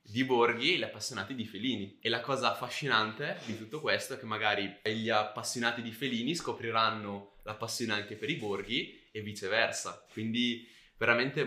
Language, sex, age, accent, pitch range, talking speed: Italian, male, 20-39, native, 105-125 Hz, 165 wpm